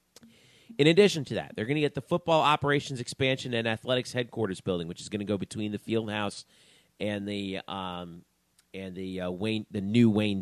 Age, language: 40-59, English